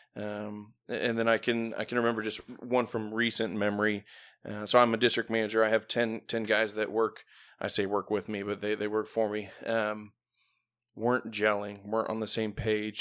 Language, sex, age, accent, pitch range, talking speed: English, male, 20-39, American, 105-115 Hz, 210 wpm